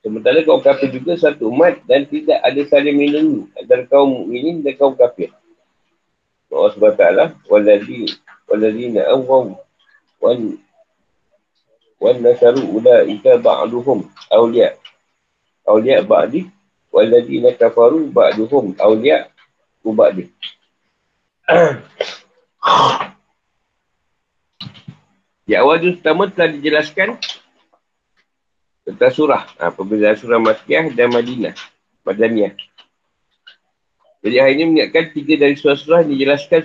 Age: 50-69